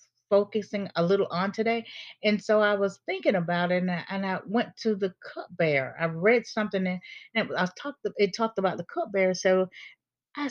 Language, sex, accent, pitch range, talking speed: English, female, American, 175-225 Hz, 195 wpm